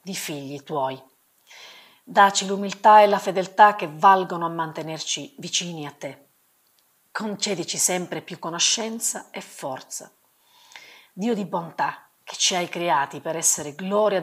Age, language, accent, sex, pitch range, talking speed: 40-59, Italian, native, female, 160-200 Hz, 130 wpm